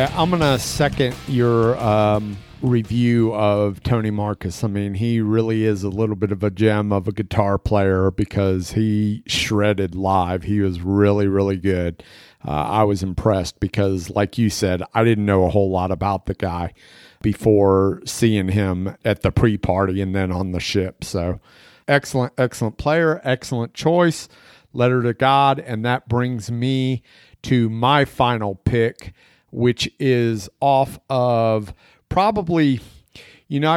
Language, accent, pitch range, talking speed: English, American, 100-125 Hz, 155 wpm